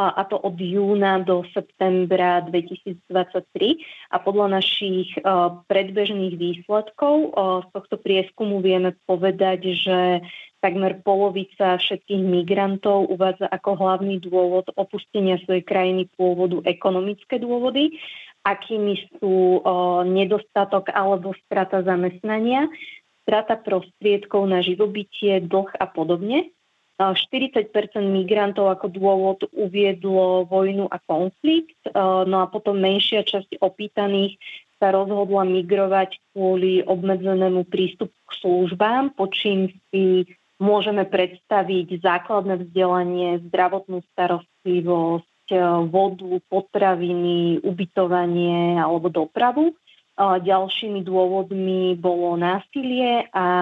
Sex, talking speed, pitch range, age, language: female, 95 wpm, 180-200 Hz, 30-49, Slovak